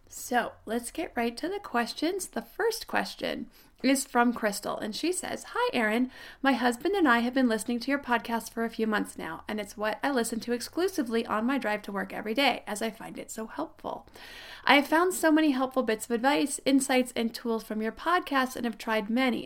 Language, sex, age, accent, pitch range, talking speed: English, female, 30-49, American, 220-270 Hz, 220 wpm